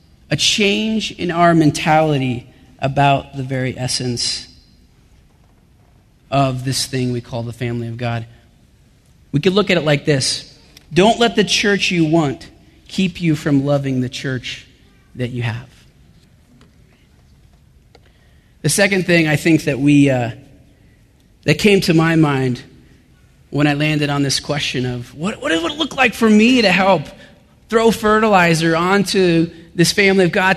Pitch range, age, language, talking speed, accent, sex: 135-190 Hz, 30-49, English, 150 wpm, American, male